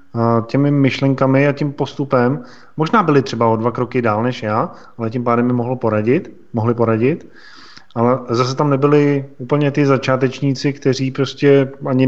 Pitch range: 120-140 Hz